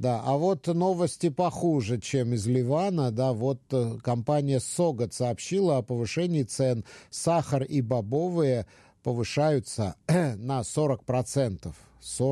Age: 50-69